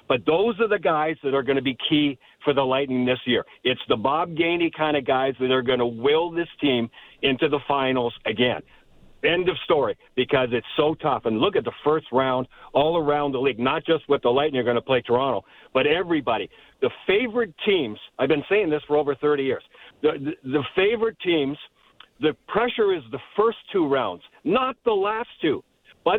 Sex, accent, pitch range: male, American, 135-180 Hz